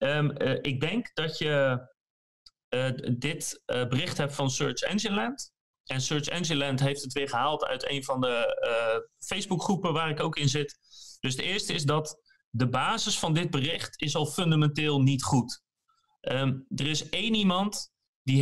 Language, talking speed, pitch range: Dutch, 175 wpm, 135-190 Hz